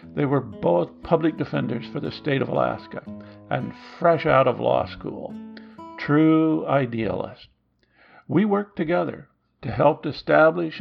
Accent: American